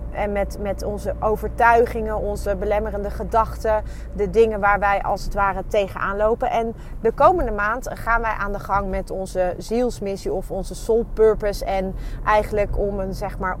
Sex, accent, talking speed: female, Dutch, 170 wpm